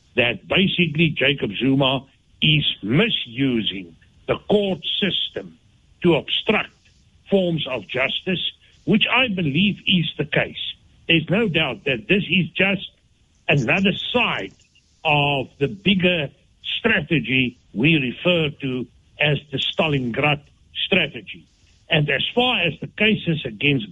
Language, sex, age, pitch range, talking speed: English, male, 60-79, 125-185 Hz, 120 wpm